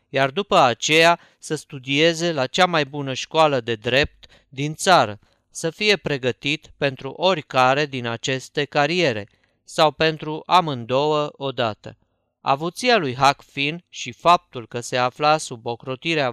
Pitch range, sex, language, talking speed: 130-165 Hz, male, Romanian, 135 wpm